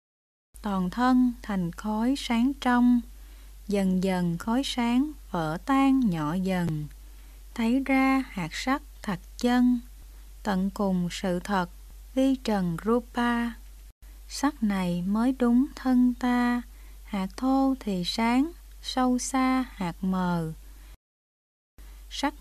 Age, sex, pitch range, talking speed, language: 20-39, female, 180-255 Hz, 110 wpm, Vietnamese